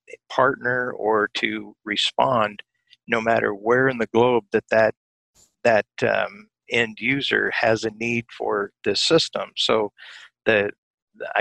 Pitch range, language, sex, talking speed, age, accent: 115-180 Hz, English, male, 125 wpm, 50-69, American